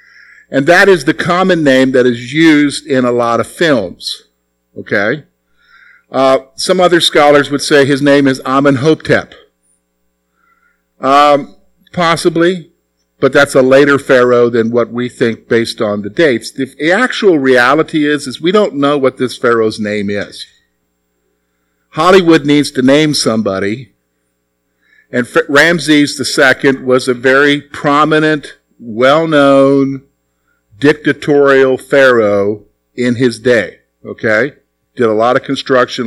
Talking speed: 130 wpm